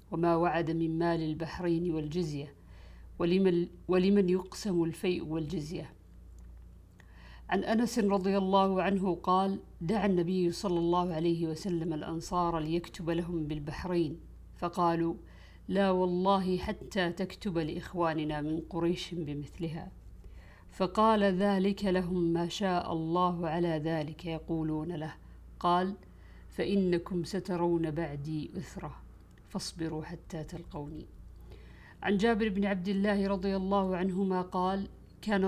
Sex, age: female, 50-69